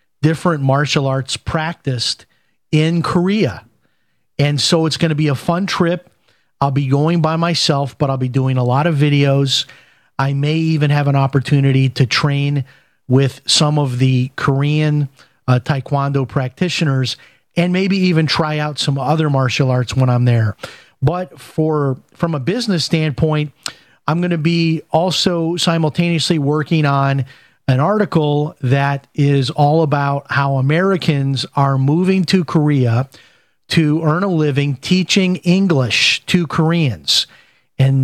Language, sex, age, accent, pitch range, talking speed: English, male, 40-59, American, 135-165 Hz, 145 wpm